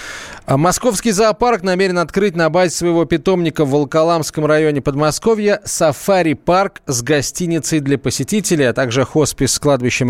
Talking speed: 130 wpm